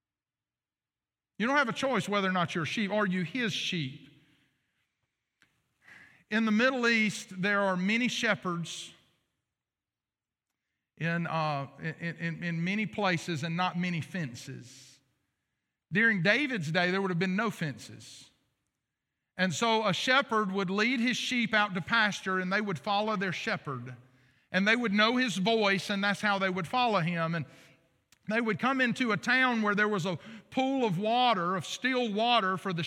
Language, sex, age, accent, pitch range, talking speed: English, male, 50-69, American, 180-240 Hz, 170 wpm